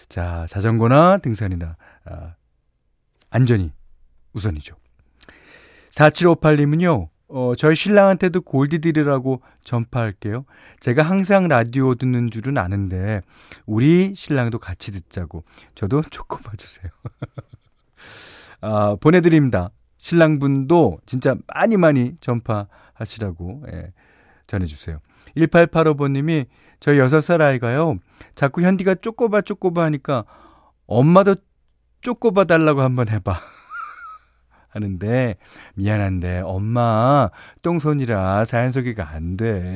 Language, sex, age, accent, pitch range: Korean, male, 40-59, native, 95-160 Hz